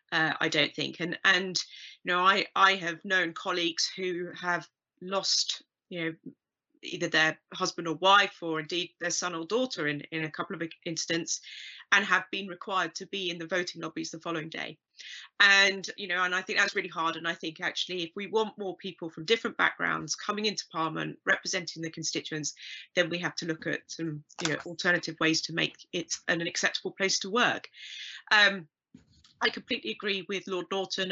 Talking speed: 195 wpm